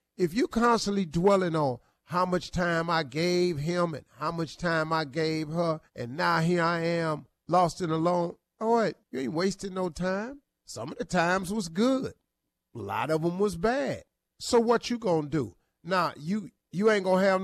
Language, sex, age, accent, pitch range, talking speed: English, male, 50-69, American, 160-205 Hz, 200 wpm